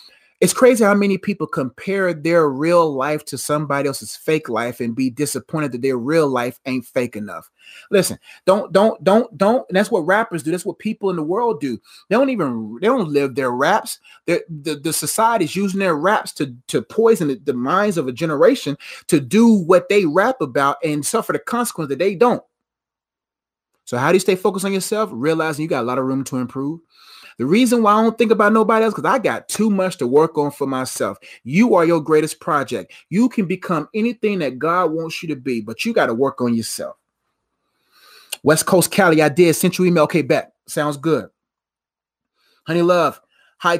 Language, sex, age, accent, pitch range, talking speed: English, male, 30-49, American, 135-195 Hz, 205 wpm